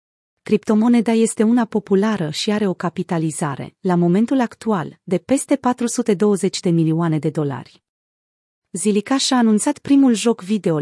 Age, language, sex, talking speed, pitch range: 30-49, Romanian, female, 135 wpm, 175-220 Hz